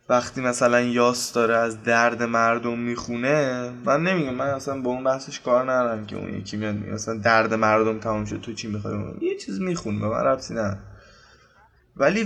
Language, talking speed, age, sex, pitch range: Persian, 175 wpm, 10-29, male, 110-135 Hz